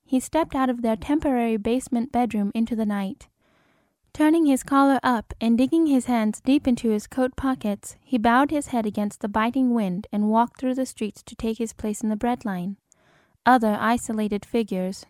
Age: 10-29